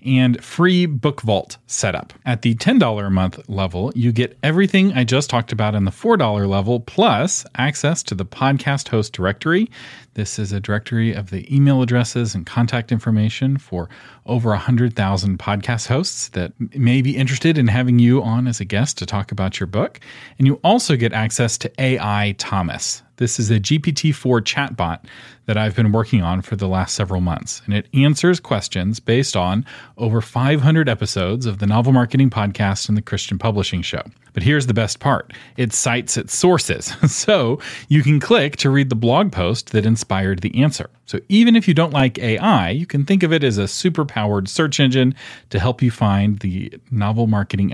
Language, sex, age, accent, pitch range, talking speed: English, male, 40-59, American, 105-135 Hz, 185 wpm